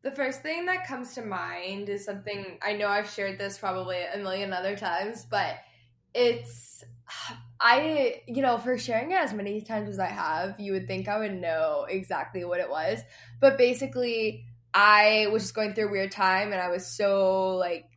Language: English